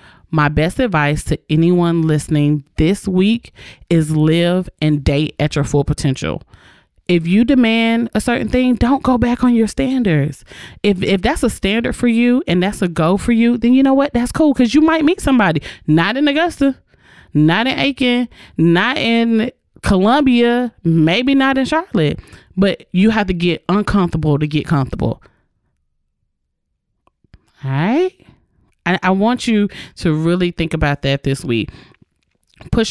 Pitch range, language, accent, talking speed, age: 150-235 Hz, English, American, 160 wpm, 30-49